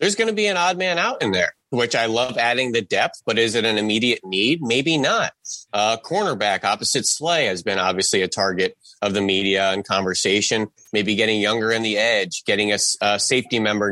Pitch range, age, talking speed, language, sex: 100-120 Hz, 30-49, 210 wpm, English, male